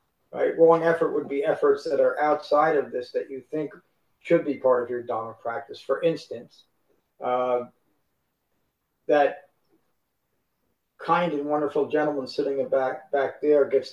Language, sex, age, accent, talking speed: English, male, 50-69, American, 145 wpm